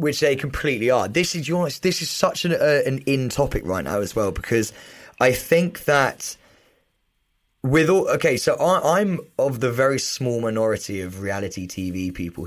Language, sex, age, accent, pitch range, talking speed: English, male, 20-39, British, 100-155 Hz, 180 wpm